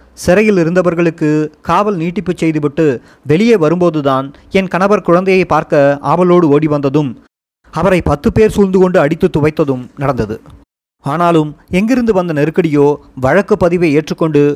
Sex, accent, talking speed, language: male, native, 120 wpm, Tamil